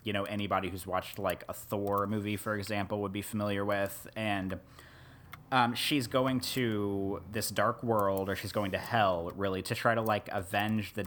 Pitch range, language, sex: 95-125 Hz, English, male